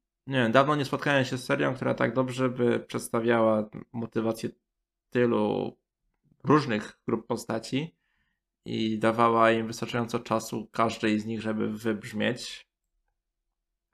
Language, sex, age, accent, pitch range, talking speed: Polish, male, 20-39, native, 110-125 Hz, 115 wpm